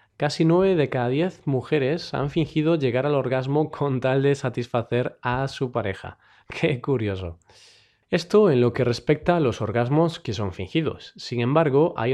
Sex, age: male, 20-39